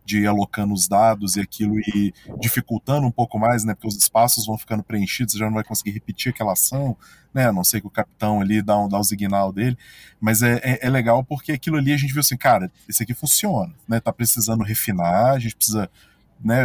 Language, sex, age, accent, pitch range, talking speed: Portuguese, male, 20-39, Brazilian, 105-130 Hz, 235 wpm